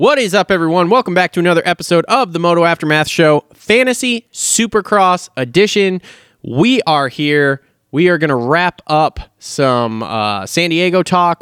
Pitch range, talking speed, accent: 135-170 Hz, 165 wpm, American